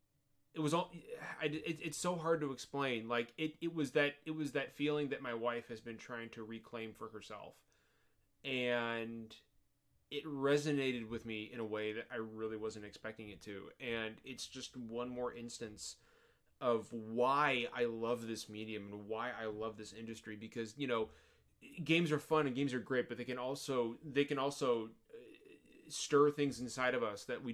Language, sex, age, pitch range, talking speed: English, male, 20-39, 115-145 Hz, 185 wpm